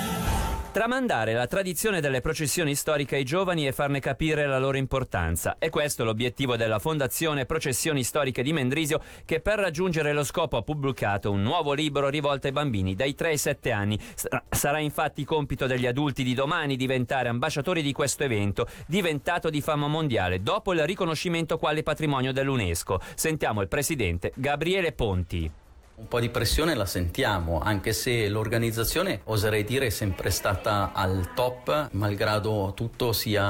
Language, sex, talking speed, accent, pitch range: Italian, male, 155 wpm, native, 100-145 Hz